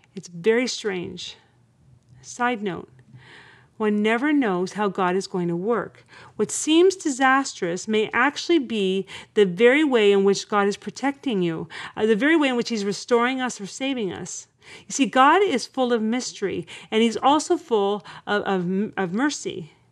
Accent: American